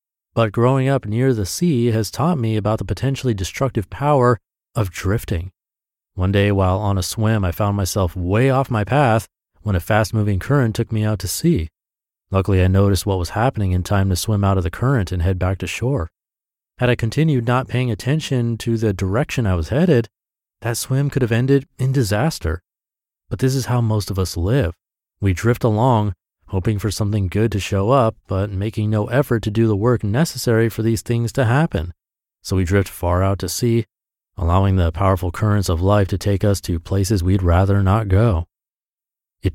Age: 30-49